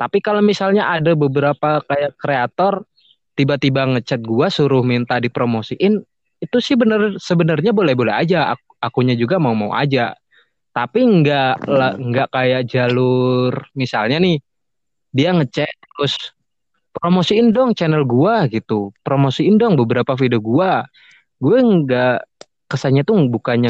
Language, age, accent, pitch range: Indonesian, 20-39, native, 125-165 Hz